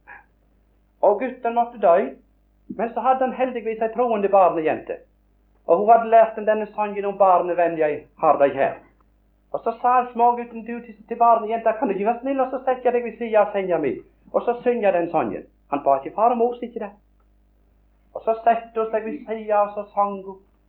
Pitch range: 195-255 Hz